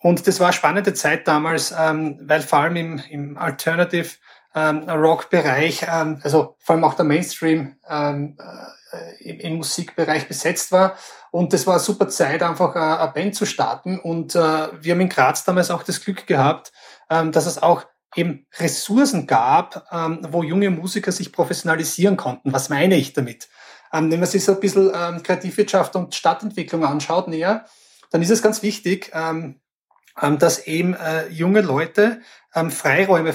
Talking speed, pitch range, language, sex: 170 wpm, 160-185 Hz, German, male